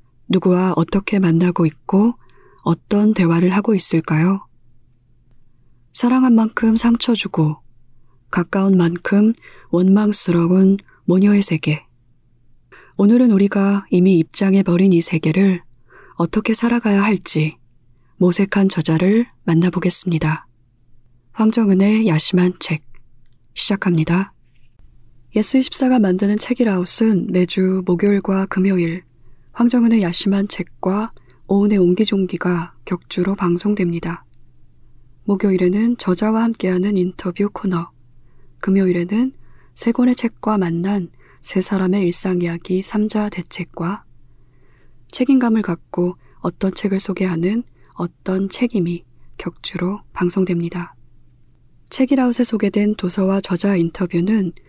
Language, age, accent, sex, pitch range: Korean, 20-39, native, female, 160-205 Hz